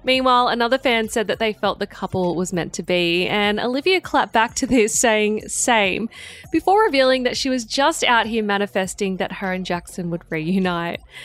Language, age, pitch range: English, 20-39, 185-245 Hz